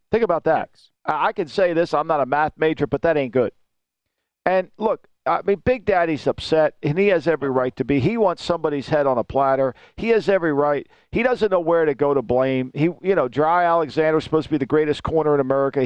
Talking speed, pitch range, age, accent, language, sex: 235 wpm, 145-205 Hz, 50-69, American, English, male